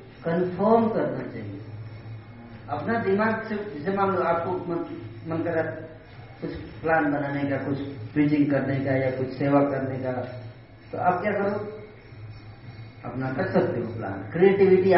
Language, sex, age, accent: Hindi, female, 40-59, native